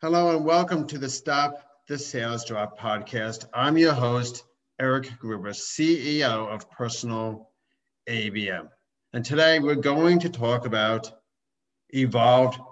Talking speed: 125 wpm